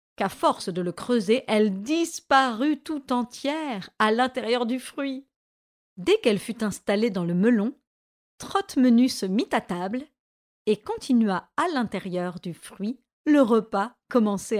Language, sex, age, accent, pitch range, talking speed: French, female, 40-59, French, 195-275 Hz, 145 wpm